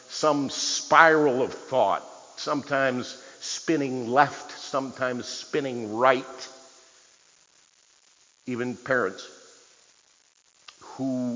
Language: English